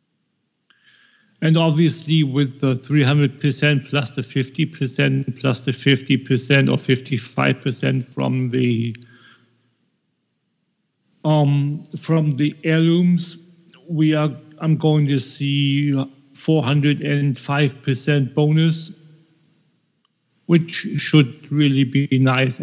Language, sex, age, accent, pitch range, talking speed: English, male, 50-69, German, 125-150 Hz, 110 wpm